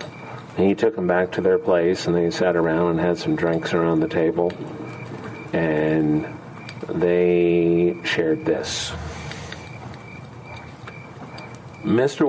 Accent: American